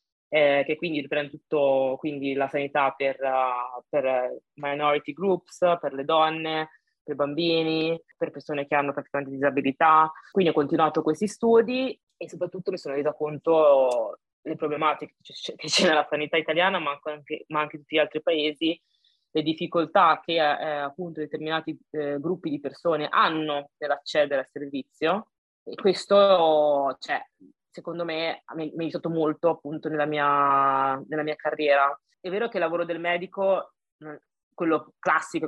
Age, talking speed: 20-39, 155 wpm